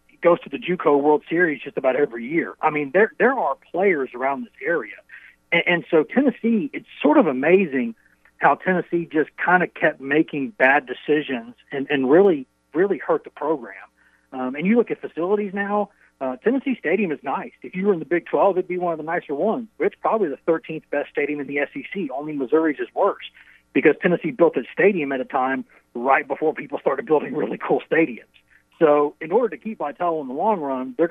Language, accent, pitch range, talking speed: English, American, 140-200 Hz, 210 wpm